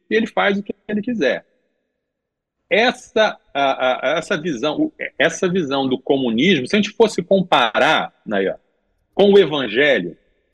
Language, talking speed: Portuguese, 140 wpm